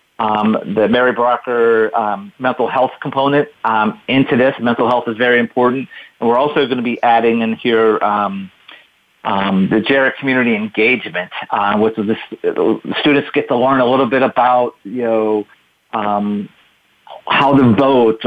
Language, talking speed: English, 165 wpm